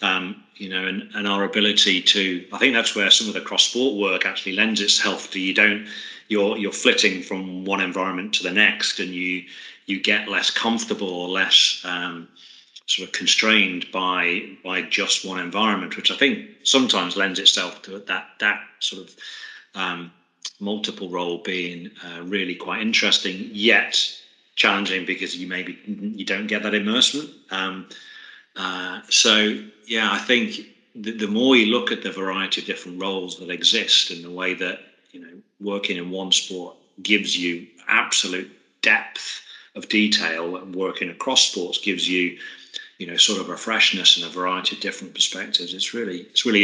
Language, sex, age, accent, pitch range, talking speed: English, male, 30-49, British, 90-105 Hz, 175 wpm